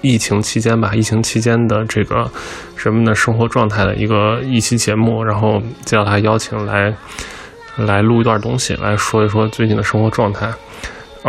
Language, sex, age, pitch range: Chinese, male, 20-39, 105-115 Hz